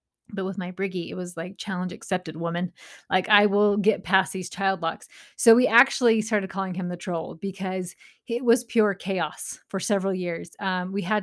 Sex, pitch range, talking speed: female, 185-230 Hz, 200 wpm